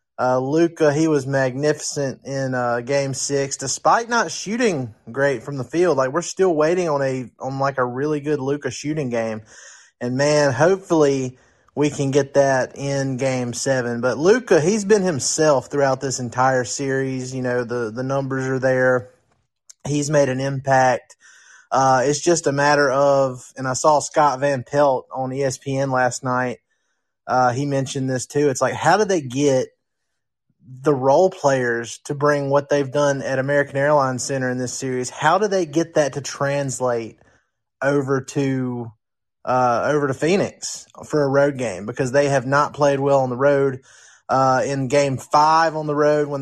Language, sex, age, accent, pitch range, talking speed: English, male, 30-49, American, 130-145 Hz, 175 wpm